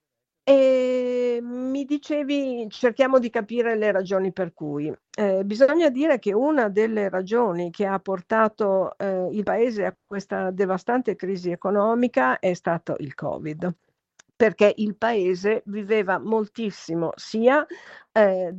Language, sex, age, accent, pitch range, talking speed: Italian, female, 50-69, native, 180-220 Hz, 125 wpm